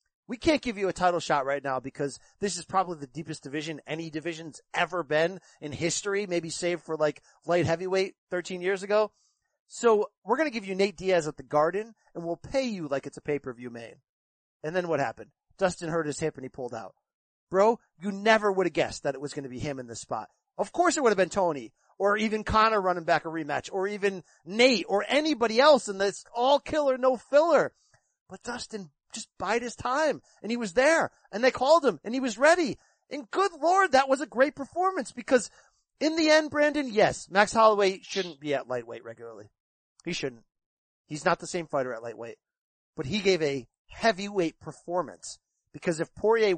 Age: 30-49